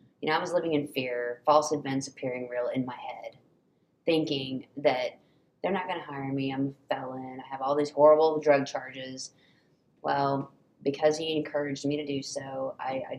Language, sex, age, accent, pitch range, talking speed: English, female, 20-39, American, 135-150 Hz, 185 wpm